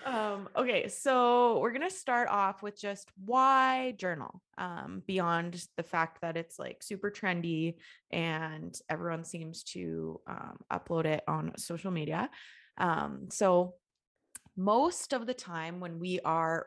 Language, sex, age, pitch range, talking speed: English, female, 20-39, 150-200 Hz, 145 wpm